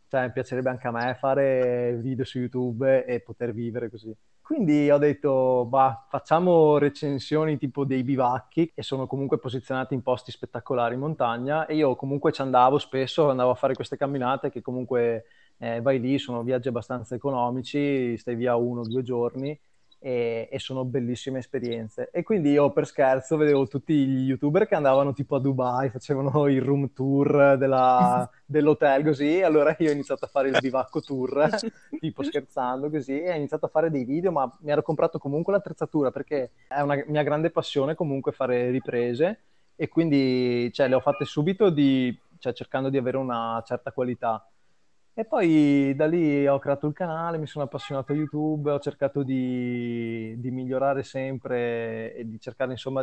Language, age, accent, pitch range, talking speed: Italian, 20-39, native, 125-145 Hz, 170 wpm